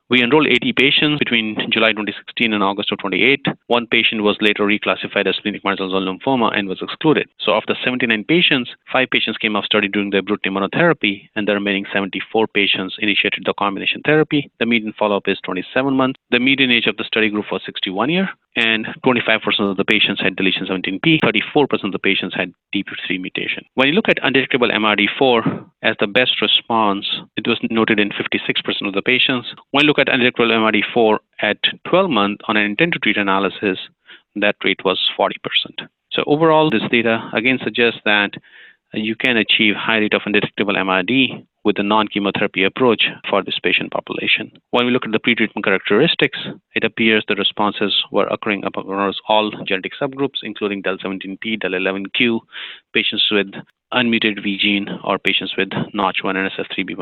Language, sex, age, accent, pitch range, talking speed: English, male, 30-49, Indian, 100-120 Hz, 175 wpm